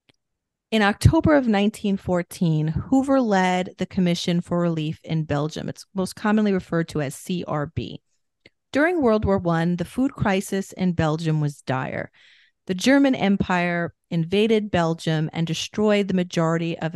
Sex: female